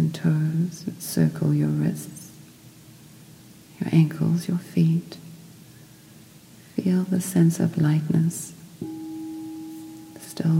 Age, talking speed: 40-59, 85 wpm